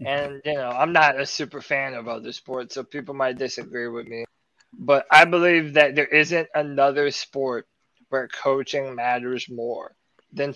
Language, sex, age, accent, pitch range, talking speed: English, male, 20-39, American, 140-185 Hz, 170 wpm